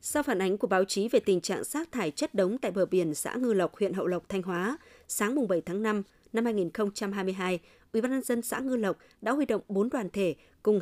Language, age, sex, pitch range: Vietnamese, 20-39, female, 185-235 Hz